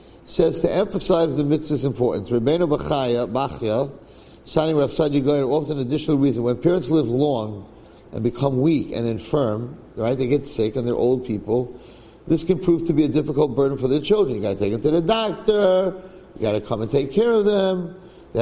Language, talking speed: English, 200 wpm